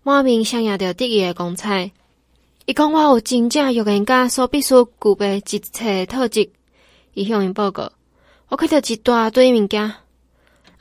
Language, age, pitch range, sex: Chinese, 20-39, 185-230 Hz, female